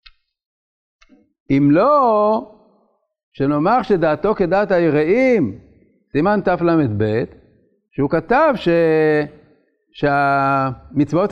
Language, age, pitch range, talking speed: Hebrew, 60-79, 155-205 Hz, 65 wpm